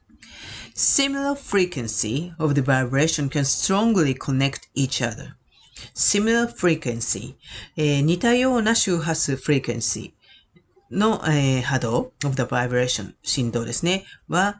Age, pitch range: 40-59, 135-190 Hz